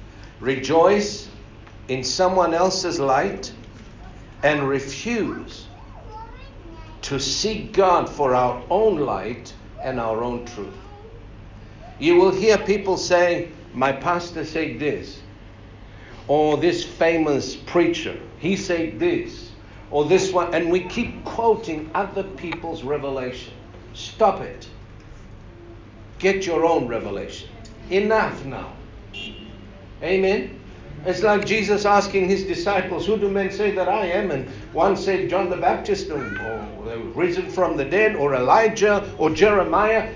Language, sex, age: English, male, 60-79